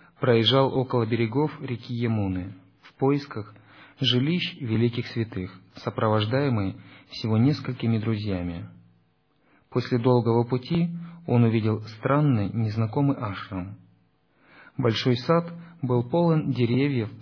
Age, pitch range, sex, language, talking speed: 40-59, 105-135 Hz, male, Russian, 95 wpm